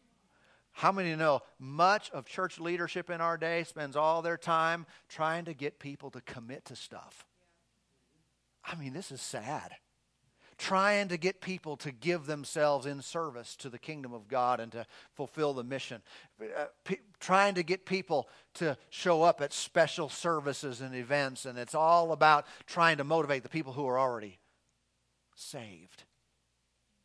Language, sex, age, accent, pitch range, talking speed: English, male, 40-59, American, 135-190 Hz, 155 wpm